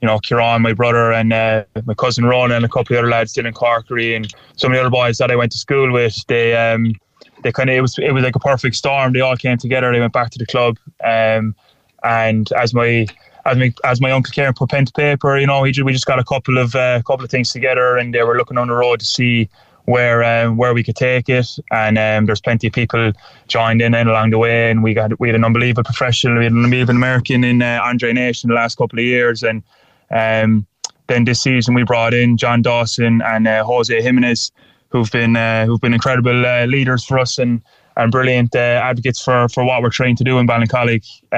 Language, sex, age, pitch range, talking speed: English, male, 20-39, 115-125 Hz, 250 wpm